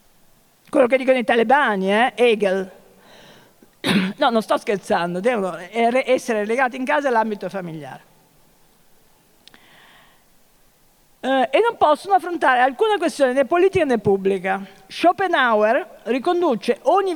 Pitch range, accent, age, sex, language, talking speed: 210-290 Hz, native, 50-69, female, Italian, 110 wpm